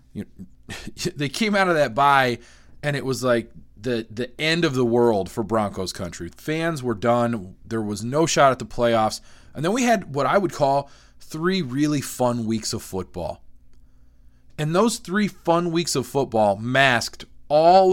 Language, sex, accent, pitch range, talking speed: English, male, American, 115-160 Hz, 180 wpm